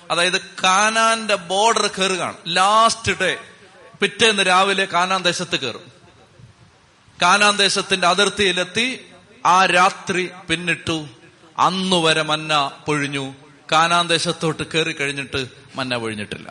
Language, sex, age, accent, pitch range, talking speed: Malayalam, male, 30-49, native, 145-200 Hz, 95 wpm